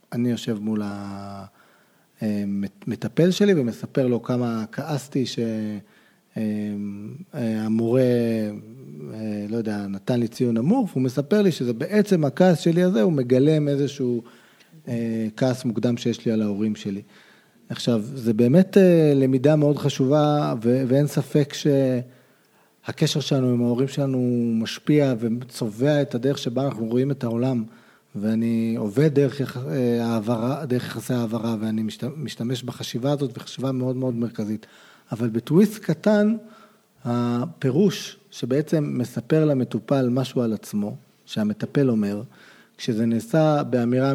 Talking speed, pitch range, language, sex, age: 115 wpm, 115-150 Hz, Hebrew, male, 40-59